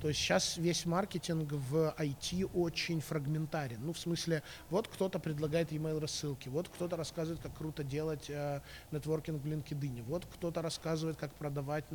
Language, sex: Ukrainian, male